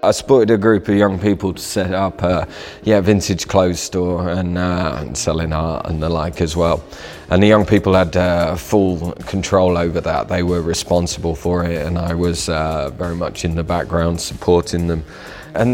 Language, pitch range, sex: English, 85-95 Hz, male